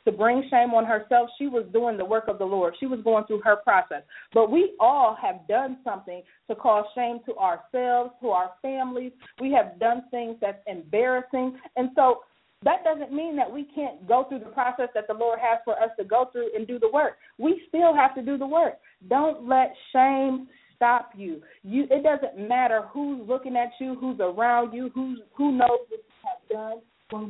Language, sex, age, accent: English, female, 40-59, American